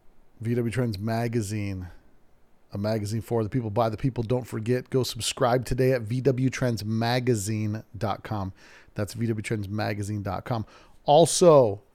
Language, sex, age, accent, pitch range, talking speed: English, male, 40-59, American, 110-130 Hz, 105 wpm